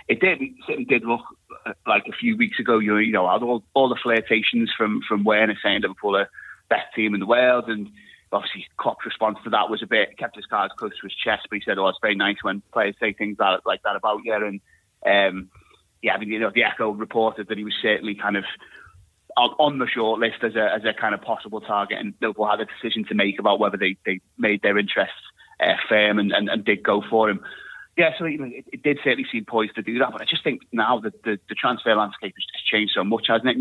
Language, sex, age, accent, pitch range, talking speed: English, male, 30-49, British, 105-120 Hz, 250 wpm